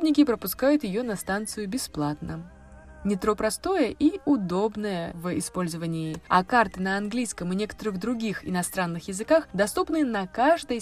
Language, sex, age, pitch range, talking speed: Russian, female, 20-39, 180-260 Hz, 135 wpm